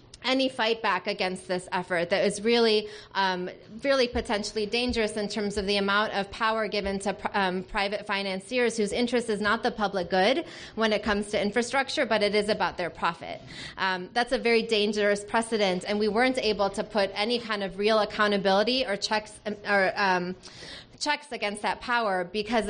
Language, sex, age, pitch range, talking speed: English, female, 20-39, 190-225 Hz, 185 wpm